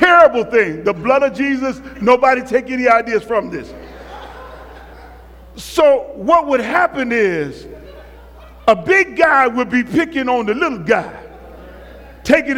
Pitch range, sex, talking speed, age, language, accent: 265-365 Hz, male, 135 wpm, 50-69, English, American